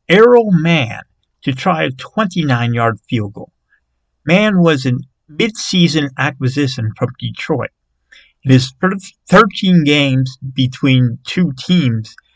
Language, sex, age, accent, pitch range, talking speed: English, male, 50-69, American, 115-150 Hz, 110 wpm